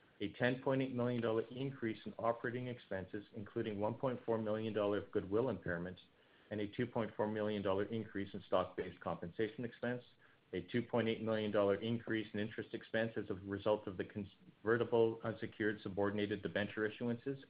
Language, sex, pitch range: English, male, 105-120 Hz